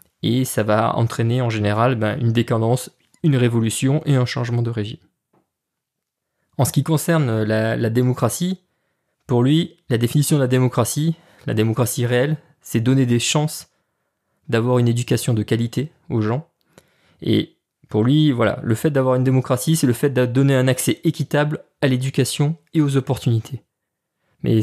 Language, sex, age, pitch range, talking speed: French, male, 20-39, 115-145 Hz, 165 wpm